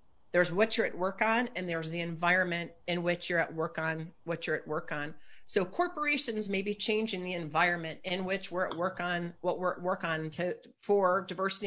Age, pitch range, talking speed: 40-59, 170-200 Hz, 215 wpm